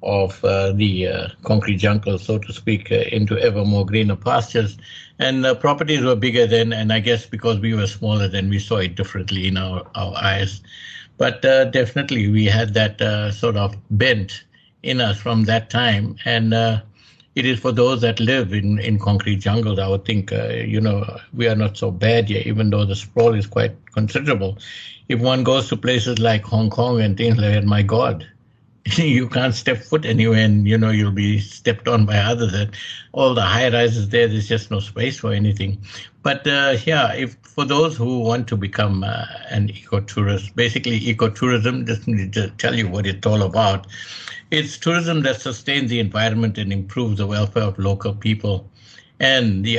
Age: 60-79